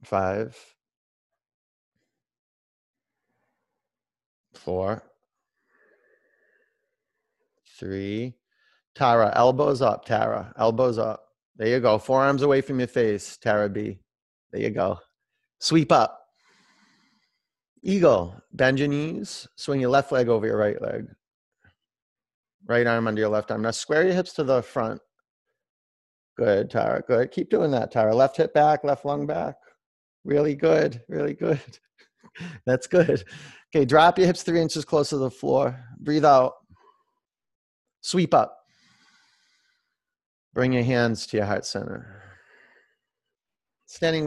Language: English